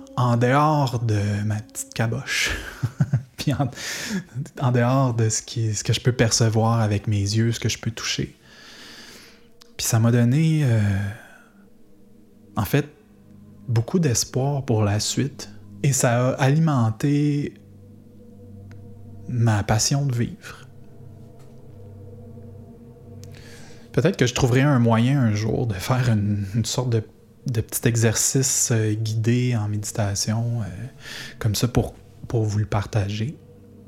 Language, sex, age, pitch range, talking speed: French, male, 20-39, 105-125 Hz, 130 wpm